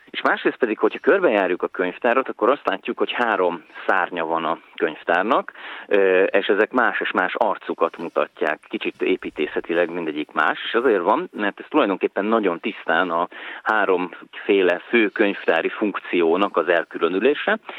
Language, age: Hungarian, 30-49